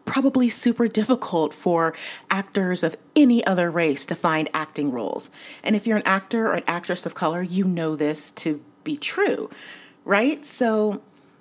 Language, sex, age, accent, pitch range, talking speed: English, female, 30-49, American, 160-230 Hz, 165 wpm